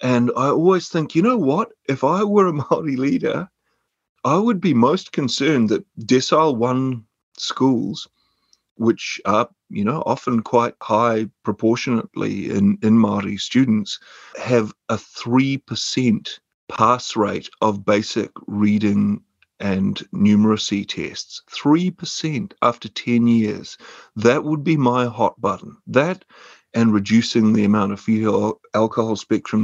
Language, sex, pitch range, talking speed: English, male, 110-130 Hz, 125 wpm